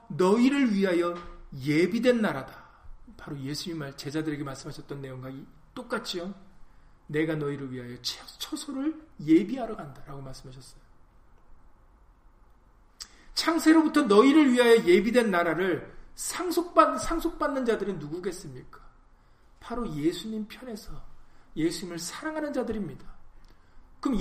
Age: 40-59